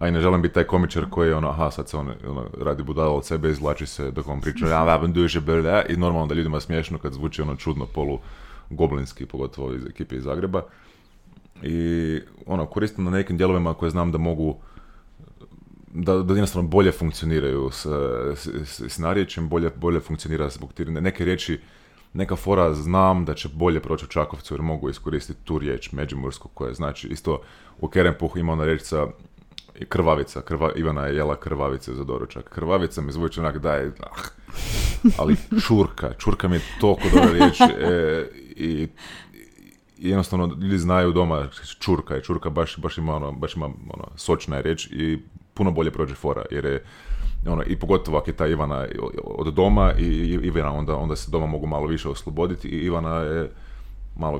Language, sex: Croatian, male